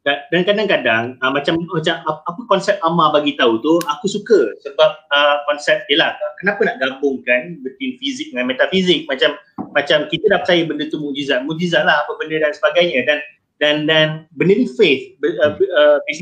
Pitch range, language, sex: 150-205 Hz, Malay, male